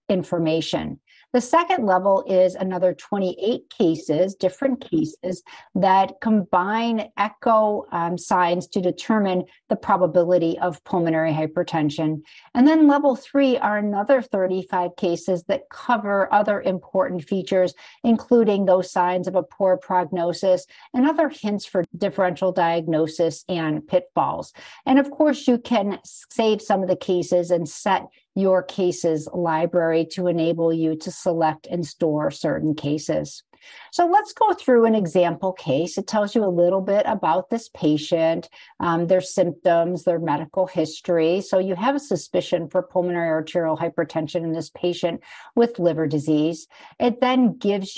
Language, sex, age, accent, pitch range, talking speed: English, female, 50-69, American, 170-215 Hz, 145 wpm